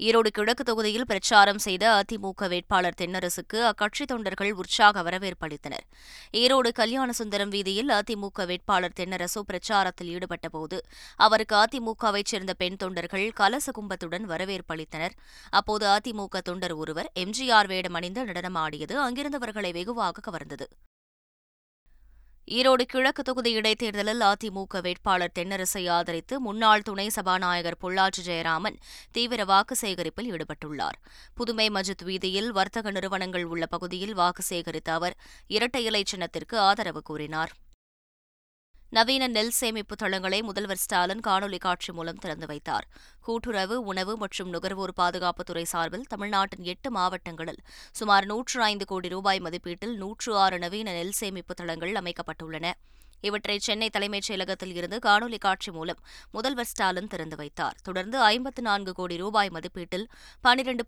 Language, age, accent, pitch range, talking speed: Tamil, 20-39, native, 175-215 Hz, 115 wpm